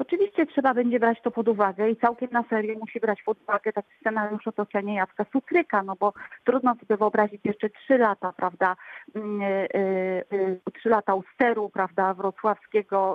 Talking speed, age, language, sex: 175 wpm, 40-59, Polish, female